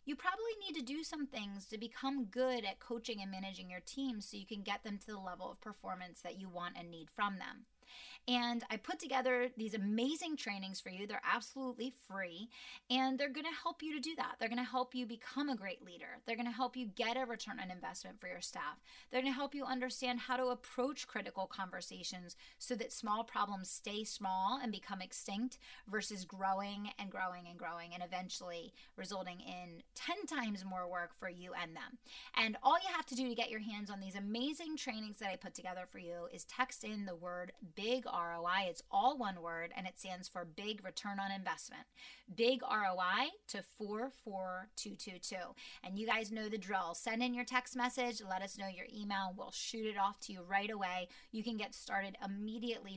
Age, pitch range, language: 30-49, 195-250 Hz, English